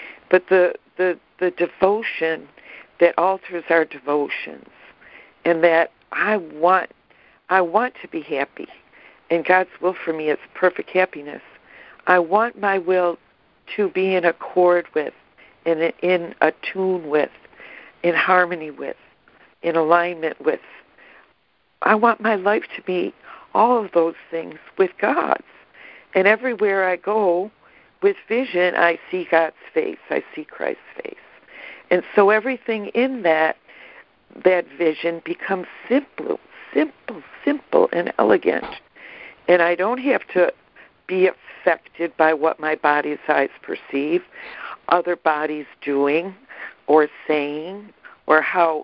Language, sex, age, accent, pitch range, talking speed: English, female, 60-79, American, 165-200 Hz, 130 wpm